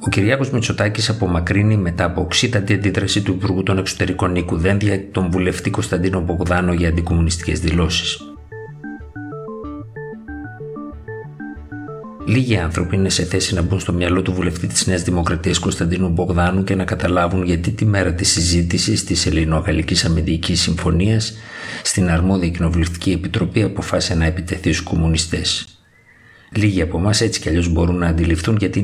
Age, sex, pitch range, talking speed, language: 50-69, male, 85-100 Hz, 140 wpm, Greek